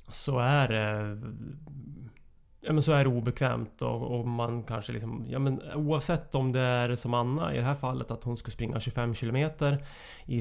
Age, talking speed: 30-49, 185 wpm